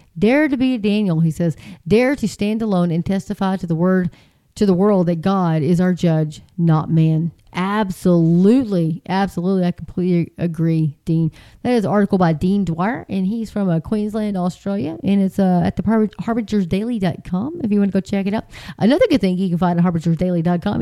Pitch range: 175-210 Hz